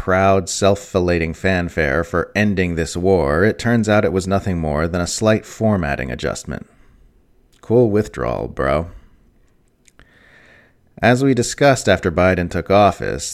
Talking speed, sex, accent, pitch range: 135 wpm, male, American, 85-100 Hz